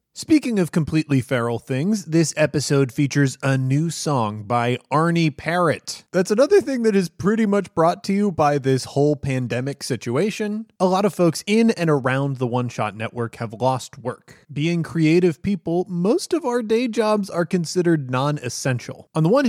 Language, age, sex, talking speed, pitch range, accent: English, 20-39, male, 170 wpm, 130-195 Hz, American